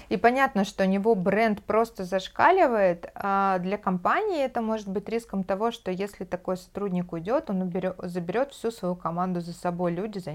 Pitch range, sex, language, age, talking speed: 180-215 Hz, female, Russian, 20-39, 180 wpm